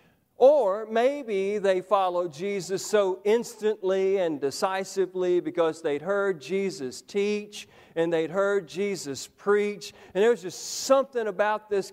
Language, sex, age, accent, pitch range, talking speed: English, male, 40-59, American, 180-220 Hz, 130 wpm